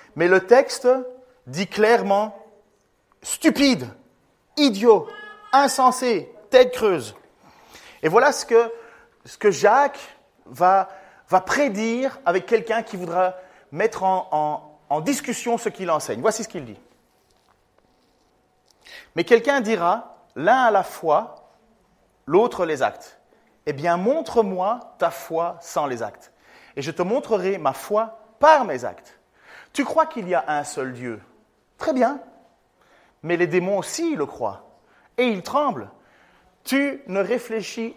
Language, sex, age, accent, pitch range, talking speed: French, male, 40-59, French, 185-250 Hz, 130 wpm